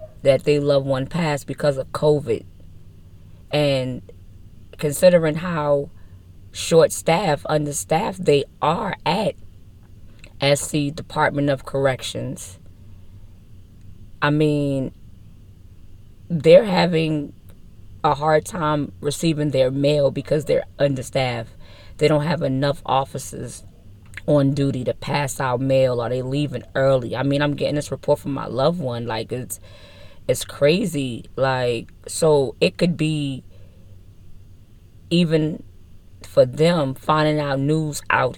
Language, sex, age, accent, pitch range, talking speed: English, female, 10-29, American, 100-155 Hz, 115 wpm